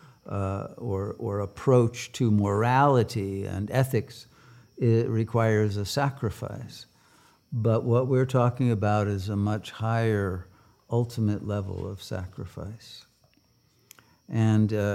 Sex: male